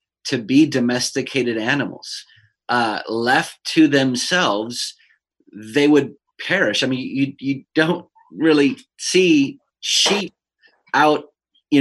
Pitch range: 130-160 Hz